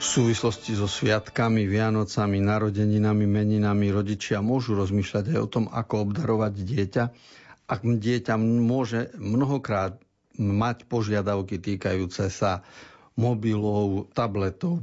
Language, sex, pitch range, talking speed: Slovak, male, 100-135 Hz, 105 wpm